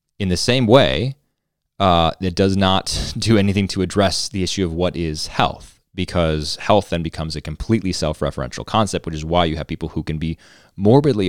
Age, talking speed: 20-39, 190 wpm